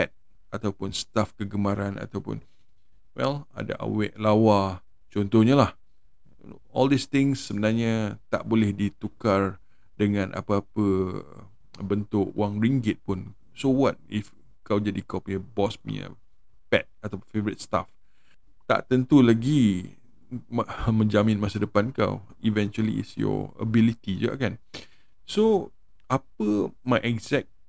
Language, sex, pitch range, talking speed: Malay, male, 100-135 Hz, 115 wpm